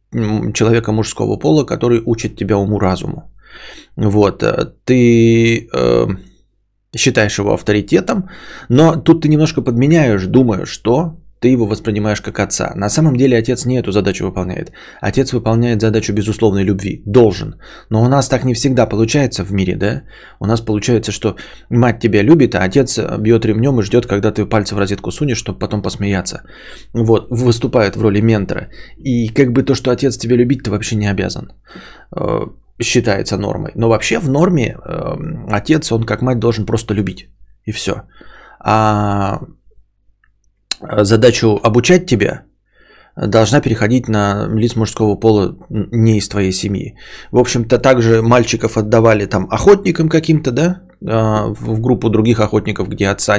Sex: male